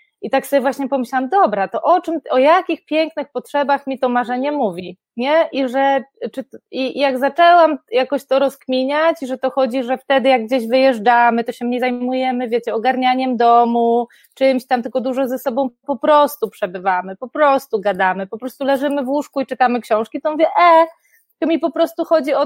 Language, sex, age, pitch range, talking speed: Polish, female, 20-39, 250-300 Hz, 190 wpm